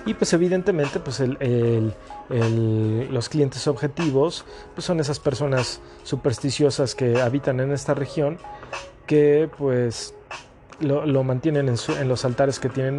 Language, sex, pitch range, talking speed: Spanish, male, 125-160 Hz, 150 wpm